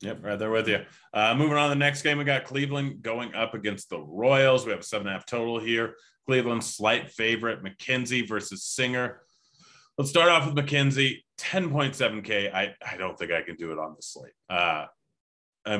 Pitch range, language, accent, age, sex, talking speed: 95-115 Hz, English, American, 30-49, male, 205 wpm